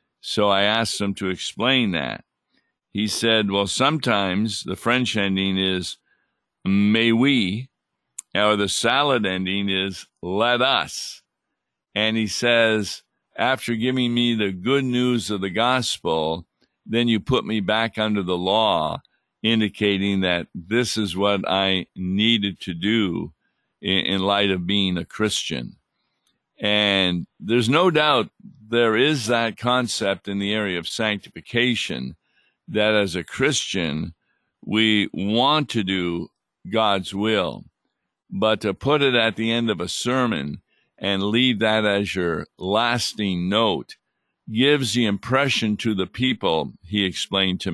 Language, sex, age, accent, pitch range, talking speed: English, male, 50-69, American, 95-115 Hz, 135 wpm